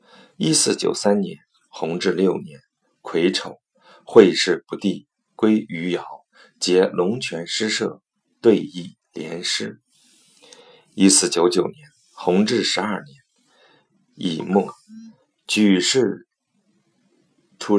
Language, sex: Chinese, male